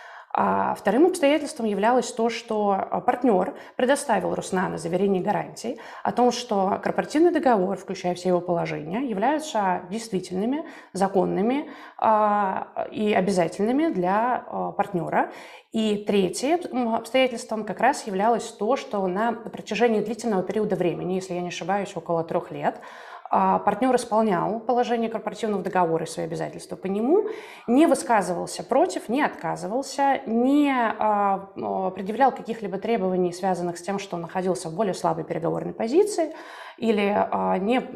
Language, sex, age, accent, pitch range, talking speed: Russian, female, 20-39, native, 185-245 Hz, 125 wpm